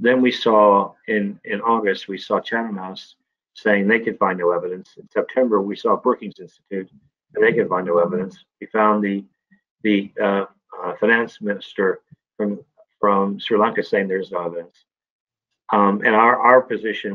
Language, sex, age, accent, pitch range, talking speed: English, male, 50-69, American, 100-135 Hz, 170 wpm